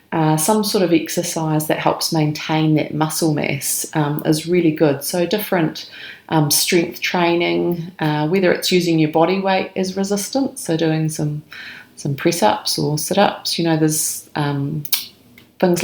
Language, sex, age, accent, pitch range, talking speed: English, female, 30-49, British, 150-170 Hz, 155 wpm